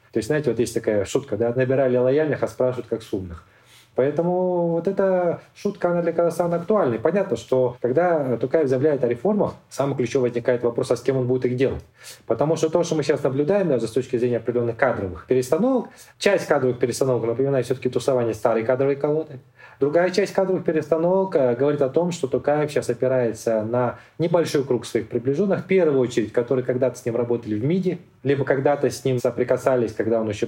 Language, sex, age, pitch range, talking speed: Russian, male, 20-39, 120-160 Hz, 190 wpm